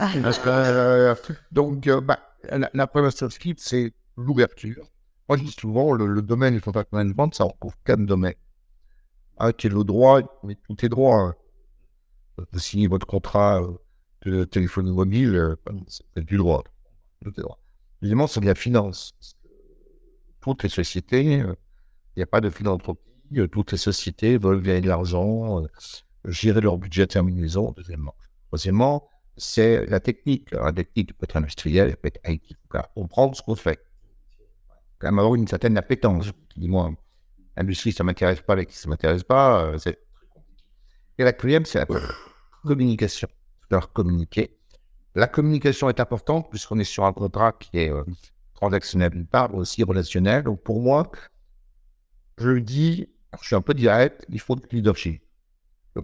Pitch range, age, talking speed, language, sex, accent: 90-125 Hz, 60-79, 170 wpm, French, male, French